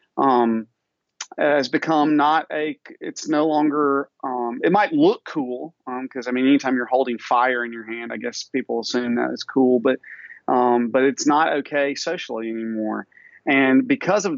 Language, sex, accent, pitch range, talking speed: English, male, American, 125-150 Hz, 175 wpm